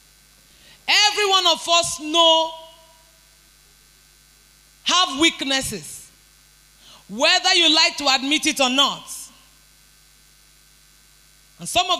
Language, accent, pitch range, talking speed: English, Nigerian, 255-360 Hz, 90 wpm